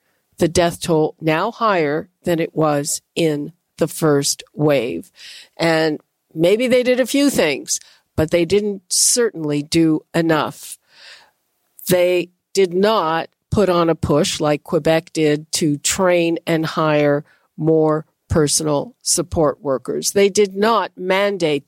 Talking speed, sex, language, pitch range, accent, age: 130 wpm, female, English, 165-215 Hz, American, 50-69